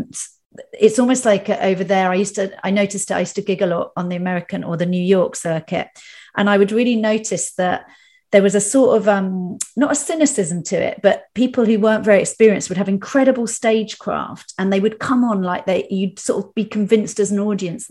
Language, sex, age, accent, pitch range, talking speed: English, female, 40-59, British, 180-215 Hz, 230 wpm